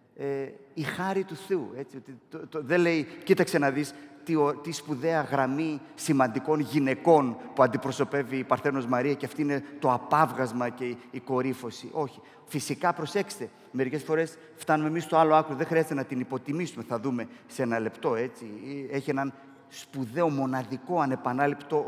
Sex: male